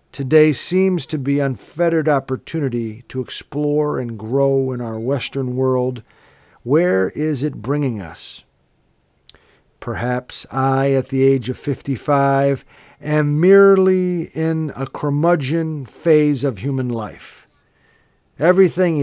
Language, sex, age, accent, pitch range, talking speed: English, male, 50-69, American, 125-150 Hz, 115 wpm